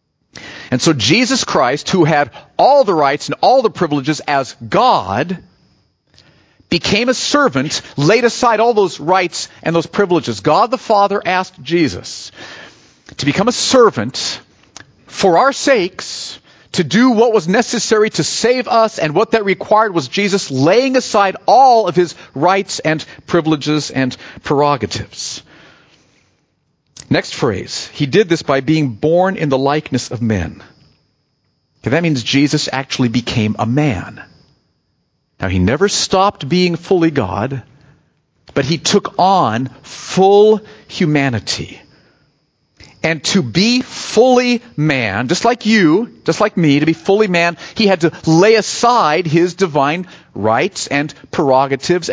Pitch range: 140-205 Hz